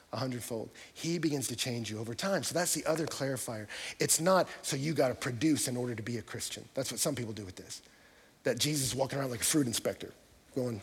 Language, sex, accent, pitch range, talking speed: English, male, American, 130-210 Hz, 240 wpm